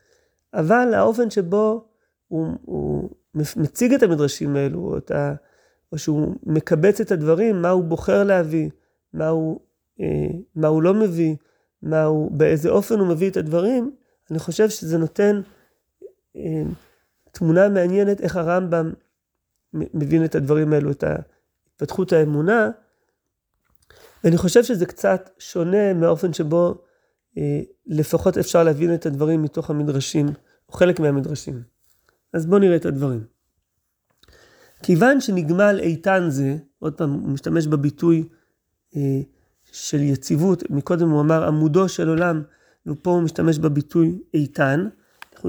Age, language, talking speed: 30-49, Hebrew, 125 wpm